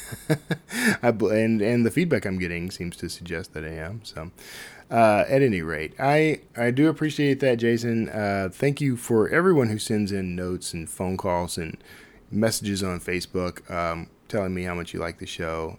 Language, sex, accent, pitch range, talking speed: English, male, American, 90-120 Hz, 190 wpm